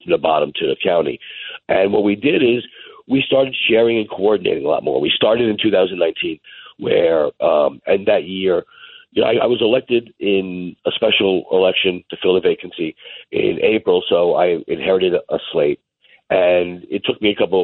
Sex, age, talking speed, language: male, 60-79, 185 wpm, English